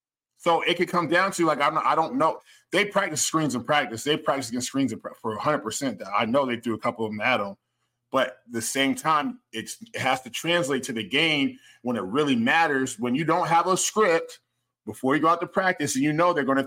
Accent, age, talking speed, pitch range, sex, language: American, 20-39, 240 wpm, 125-165 Hz, male, English